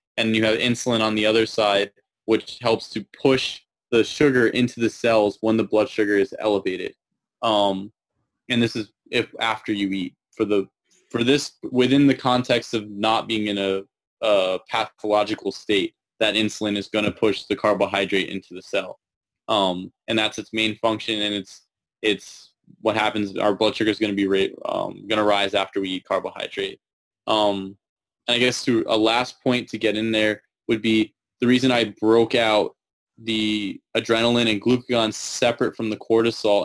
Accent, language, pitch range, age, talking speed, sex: American, English, 105-125 Hz, 20-39, 180 wpm, male